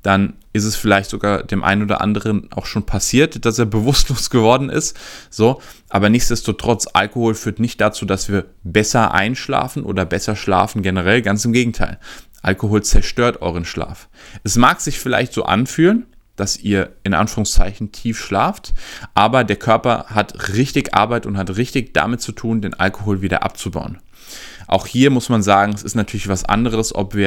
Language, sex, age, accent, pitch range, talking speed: German, male, 20-39, German, 100-120 Hz, 175 wpm